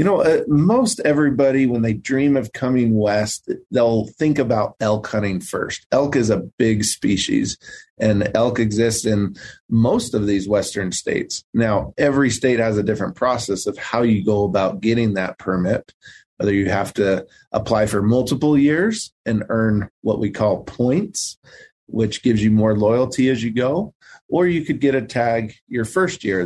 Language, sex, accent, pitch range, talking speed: English, male, American, 100-120 Hz, 175 wpm